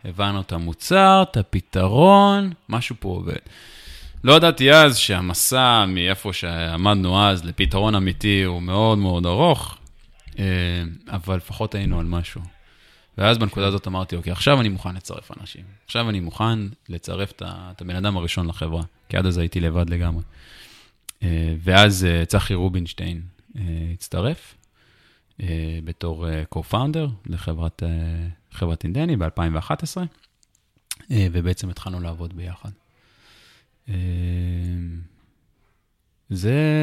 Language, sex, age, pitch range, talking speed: Hebrew, male, 20-39, 85-110 Hz, 110 wpm